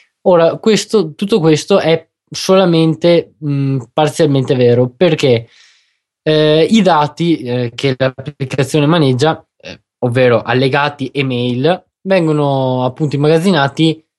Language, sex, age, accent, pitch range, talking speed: Italian, male, 20-39, native, 130-165 Hz, 105 wpm